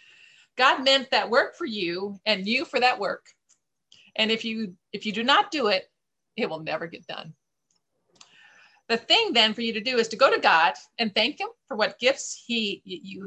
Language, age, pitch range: English, 40-59, 185-255 Hz